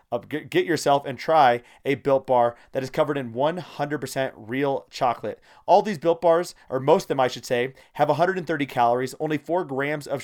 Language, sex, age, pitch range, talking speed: English, male, 30-49, 135-170 Hz, 195 wpm